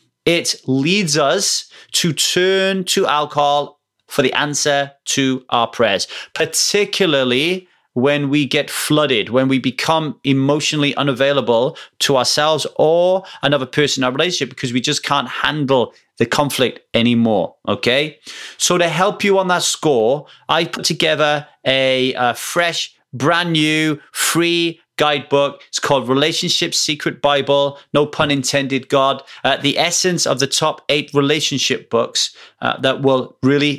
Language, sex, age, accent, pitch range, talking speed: English, male, 30-49, British, 140-170 Hz, 140 wpm